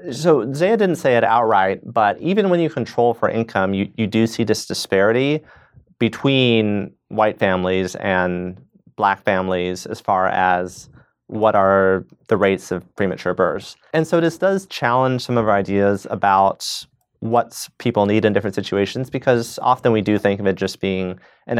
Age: 30-49